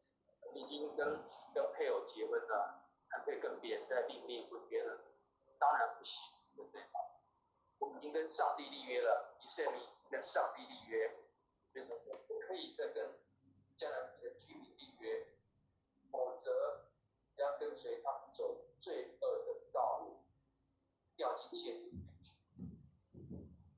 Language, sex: Chinese, male